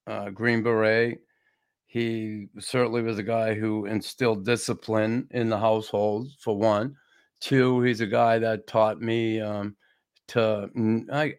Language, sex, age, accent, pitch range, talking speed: English, male, 50-69, American, 110-120 Hz, 135 wpm